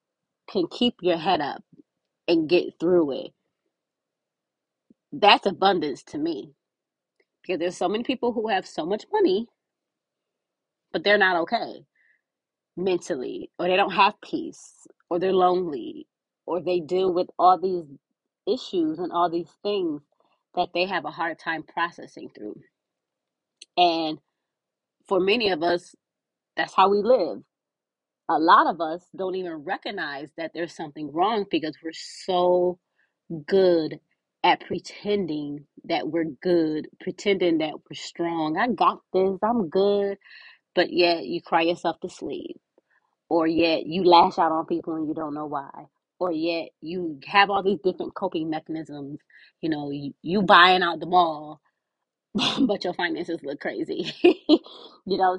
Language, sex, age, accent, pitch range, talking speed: English, female, 20-39, American, 165-200 Hz, 150 wpm